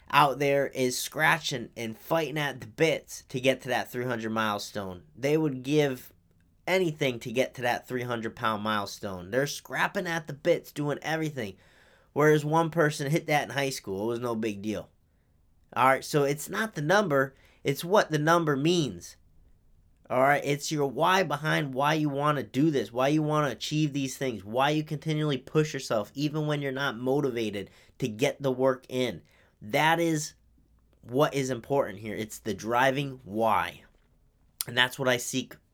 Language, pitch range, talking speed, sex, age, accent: English, 115-150 Hz, 175 wpm, male, 30-49, American